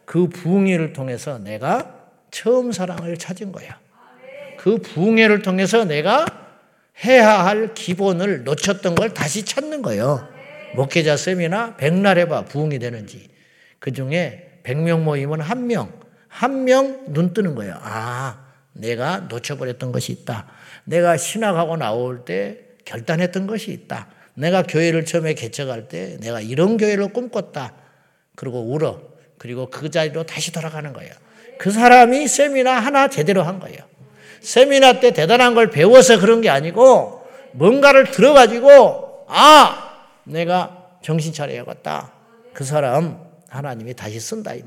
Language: Korean